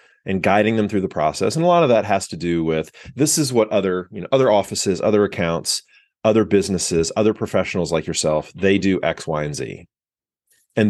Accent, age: American, 30-49